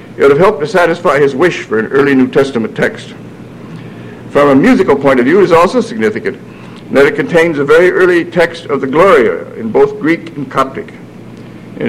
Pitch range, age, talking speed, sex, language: 120-165 Hz, 60-79, 205 wpm, male, English